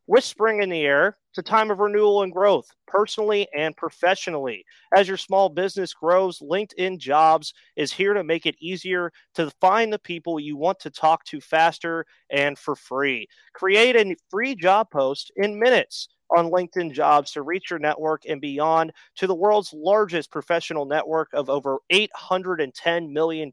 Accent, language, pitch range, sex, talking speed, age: American, English, 155-190 Hz, male, 165 wpm, 30-49